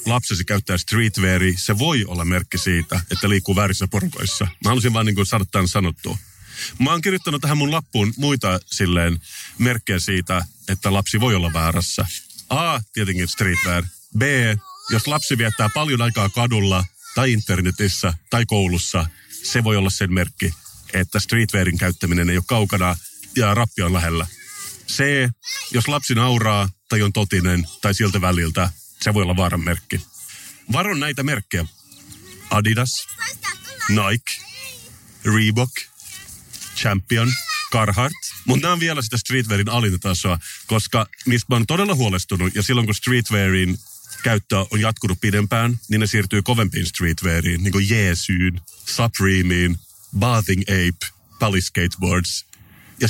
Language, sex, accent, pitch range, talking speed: Finnish, male, native, 90-115 Hz, 135 wpm